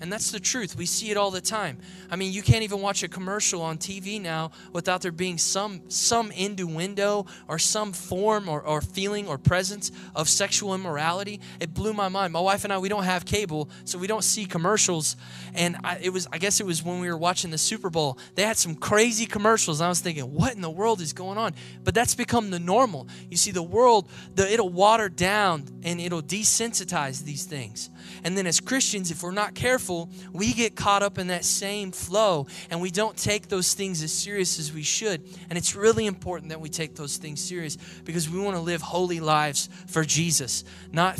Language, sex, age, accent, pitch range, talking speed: English, male, 20-39, American, 160-195 Hz, 220 wpm